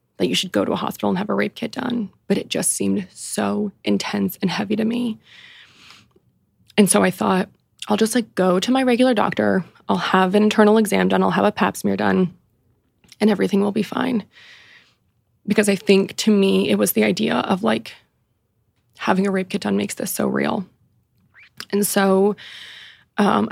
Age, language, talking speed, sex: 20-39, English, 190 wpm, female